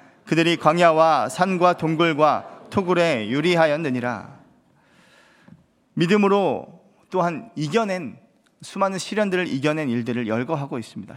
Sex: male